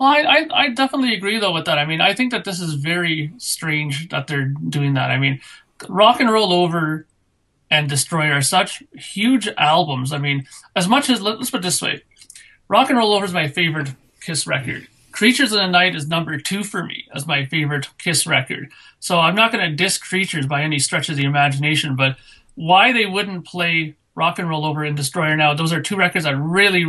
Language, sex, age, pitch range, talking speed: English, male, 30-49, 145-185 Hz, 215 wpm